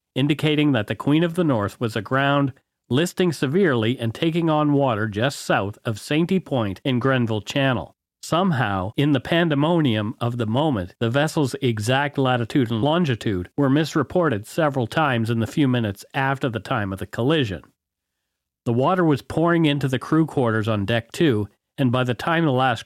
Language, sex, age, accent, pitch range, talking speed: English, male, 40-59, American, 115-155 Hz, 175 wpm